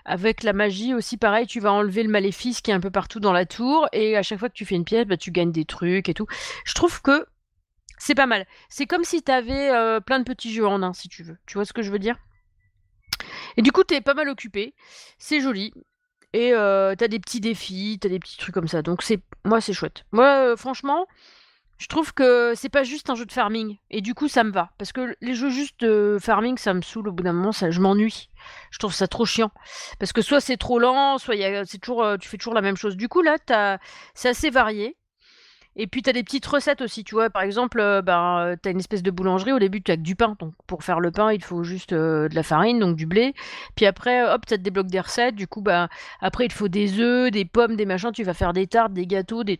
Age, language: 30-49, French